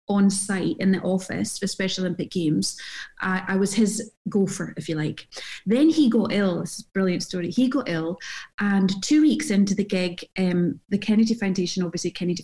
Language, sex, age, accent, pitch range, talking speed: English, female, 30-49, British, 185-215 Hz, 200 wpm